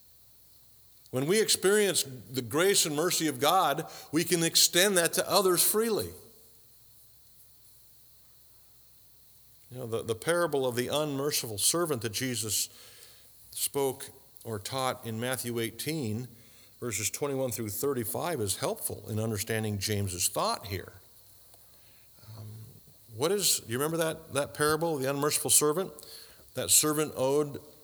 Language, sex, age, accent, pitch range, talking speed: English, male, 50-69, American, 110-140 Hz, 125 wpm